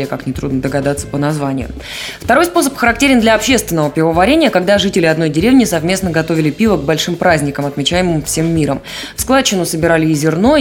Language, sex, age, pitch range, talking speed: Russian, female, 20-39, 155-205 Hz, 165 wpm